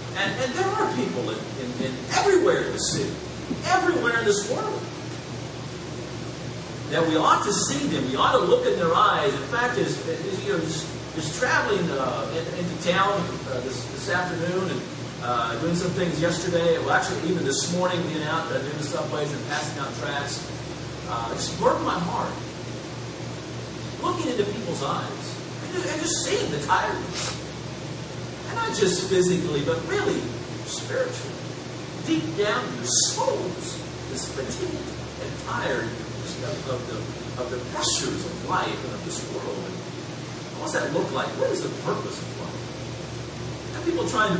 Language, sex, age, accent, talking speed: English, male, 40-59, American, 160 wpm